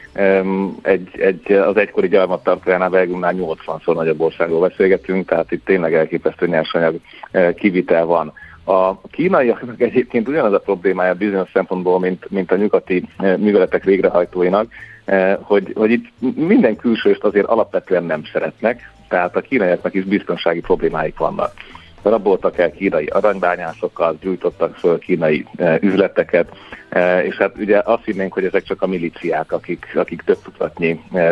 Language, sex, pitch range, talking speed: Hungarian, male, 90-100 Hz, 140 wpm